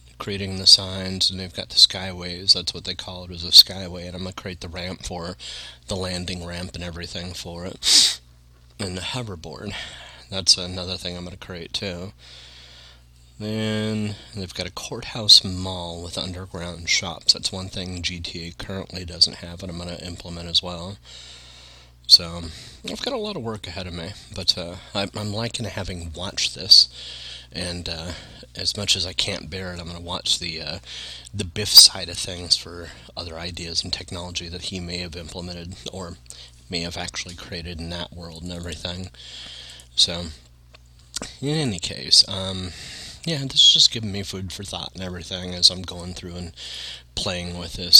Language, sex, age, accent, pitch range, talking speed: English, male, 30-49, American, 85-95 Hz, 185 wpm